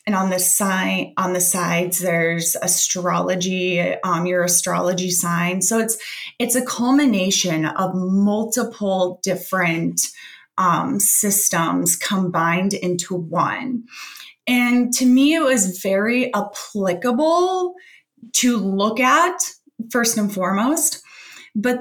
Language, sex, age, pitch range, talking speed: English, female, 20-39, 180-245 Hz, 110 wpm